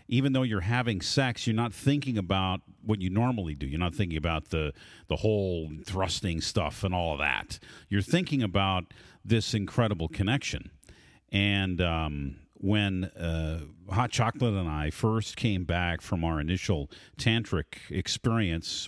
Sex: male